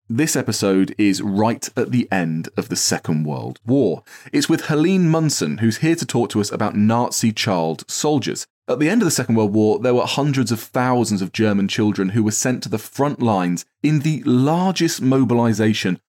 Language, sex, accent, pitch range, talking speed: English, male, British, 100-130 Hz, 200 wpm